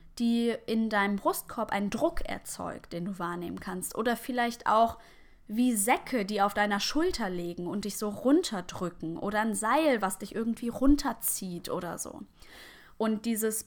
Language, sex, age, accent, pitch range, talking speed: German, female, 10-29, German, 210-265 Hz, 160 wpm